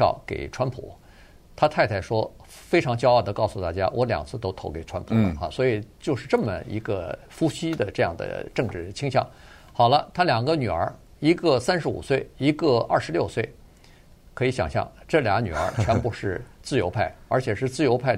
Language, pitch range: Chinese, 105-150 Hz